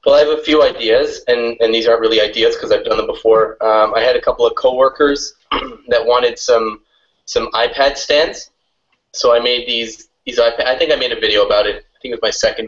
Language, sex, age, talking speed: English, male, 20-39, 235 wpm